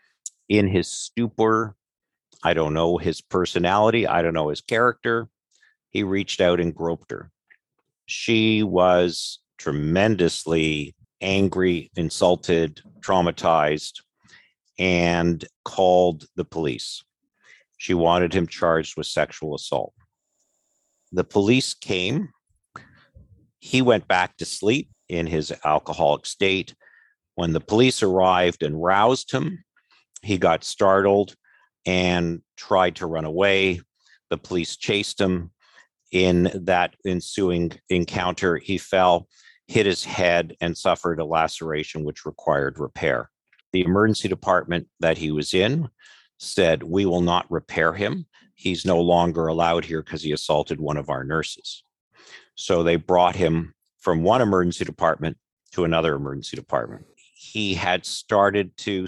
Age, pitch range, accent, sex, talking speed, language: 50-69, 85-100 Hz, American, male, 125 wpm, English